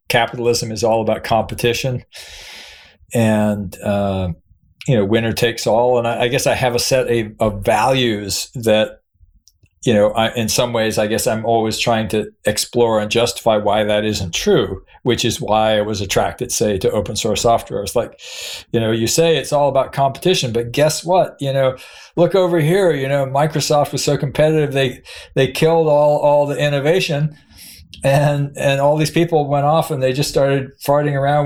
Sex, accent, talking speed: male, American, 185 wpm